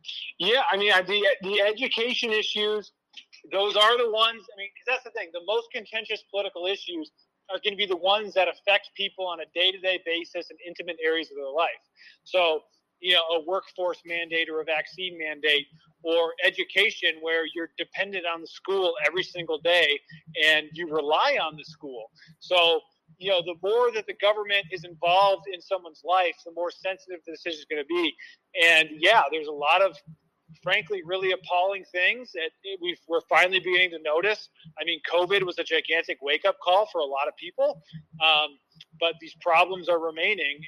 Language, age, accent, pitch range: English, 30-49, American, 160-200 Hz